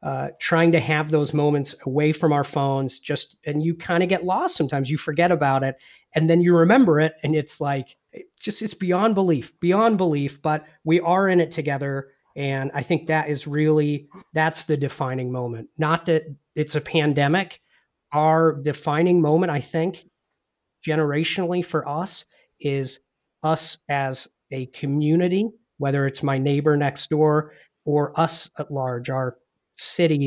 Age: 40-59